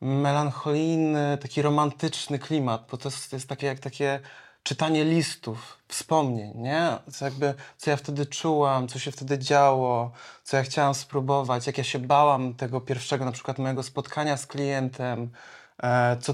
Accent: native